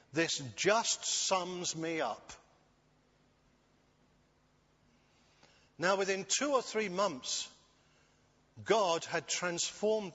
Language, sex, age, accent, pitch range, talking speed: English, male, 50-69, British, 145-205 Hz, 85 wpm